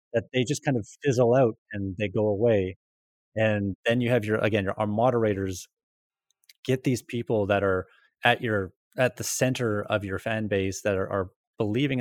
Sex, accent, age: male, American, 30-49